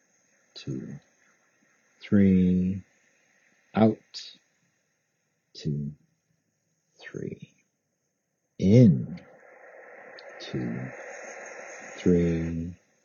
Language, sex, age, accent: English, male, 60-79, American